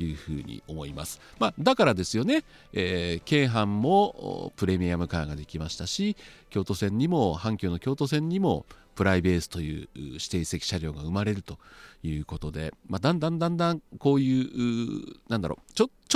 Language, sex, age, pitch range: Japanese, male, 40-59, 80-130 Hz